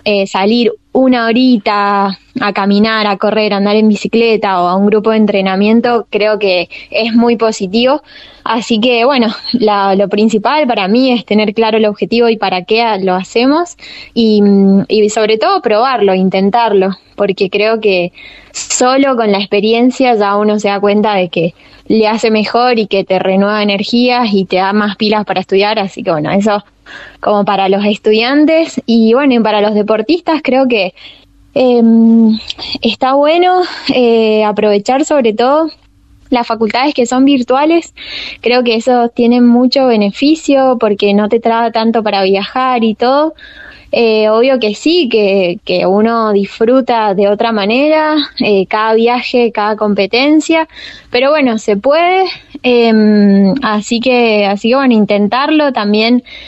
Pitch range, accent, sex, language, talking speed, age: 205-250 Hz, Argentinian, female, Spanish, 155 wpm, 20-39